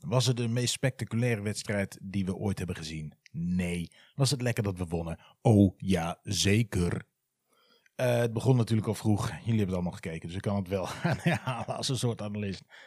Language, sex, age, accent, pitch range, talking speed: Dutch, male, 30-49, Dutch, 95-115 Hz, 195 wpm